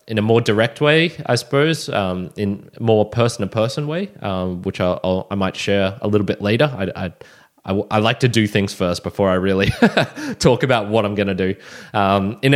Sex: male